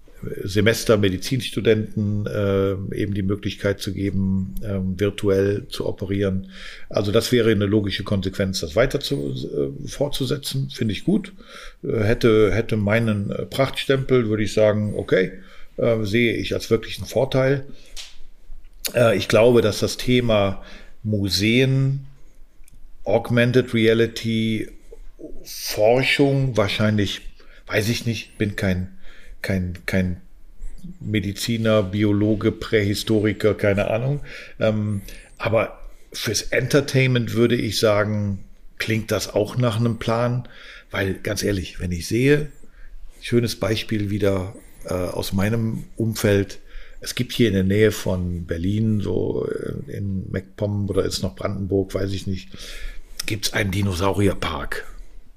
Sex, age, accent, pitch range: male, 50-69, German, 100-115 Hz